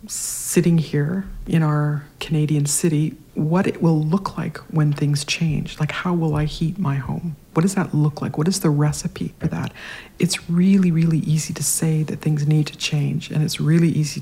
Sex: female